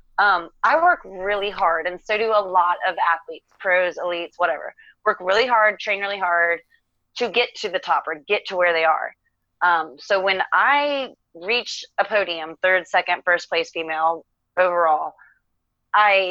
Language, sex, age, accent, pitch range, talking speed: English, female, 30-49, American, 170-210 Hz, 170 wpm